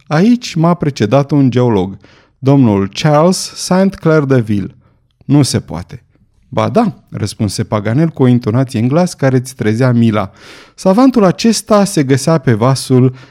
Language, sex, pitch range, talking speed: Romanian, male, 110-155 Hz, 145 wpm